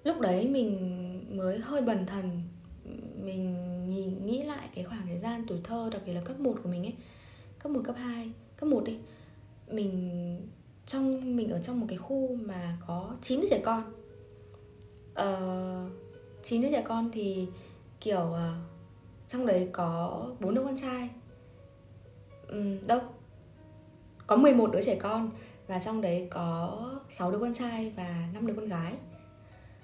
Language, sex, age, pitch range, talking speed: Vietnamese, female, 20-39, 175-240 Hz, 165 wpm